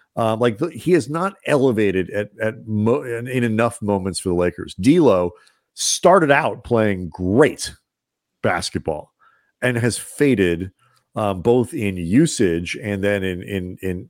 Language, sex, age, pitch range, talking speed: English, male, 40-59, 95-125 Hz, 145 wpm